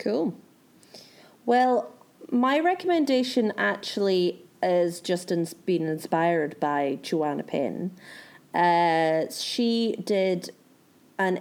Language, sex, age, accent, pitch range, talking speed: English, female, 30-49, British, 175-230 Hz, 90 wpm